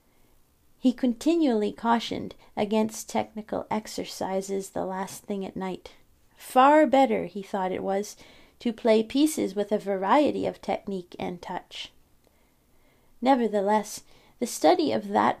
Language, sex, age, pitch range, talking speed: English, female, 40-59, 205-250 Hz, 125 wpm